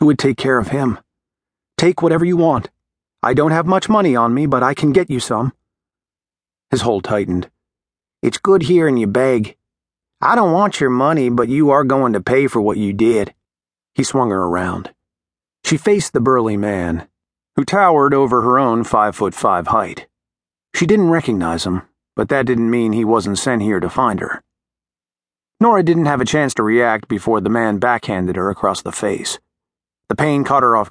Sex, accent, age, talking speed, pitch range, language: male, American, 40-59, 190 wpm, 100-145 Hz, English